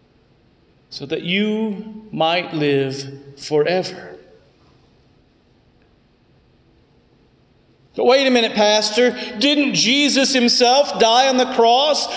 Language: English